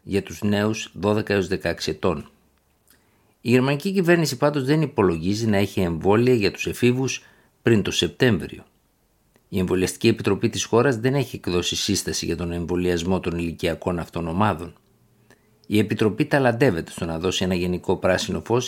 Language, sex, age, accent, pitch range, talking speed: Greek, male, 50-69, native, 95-120 Hz, 150 wpm